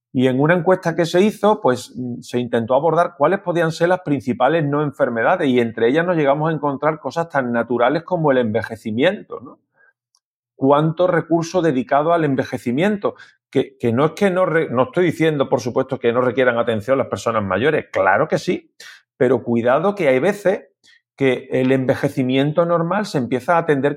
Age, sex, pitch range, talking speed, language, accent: 40-59, male, 125-165 Hz, 180 wpm, Spanish, Spanish